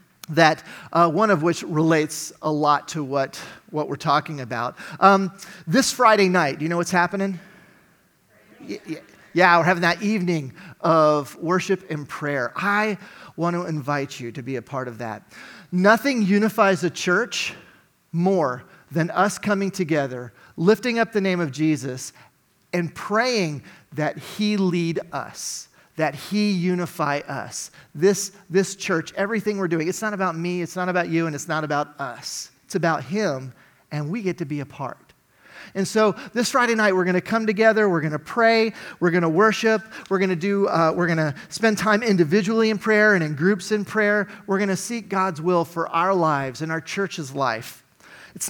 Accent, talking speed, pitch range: American, 175 wpm, 155-200 Hz